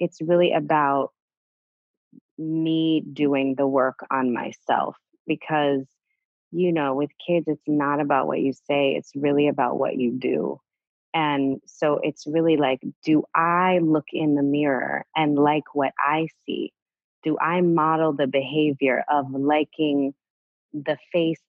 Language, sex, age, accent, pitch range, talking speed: English, female, 20-39, American, 135-155 Hz, 140 wpm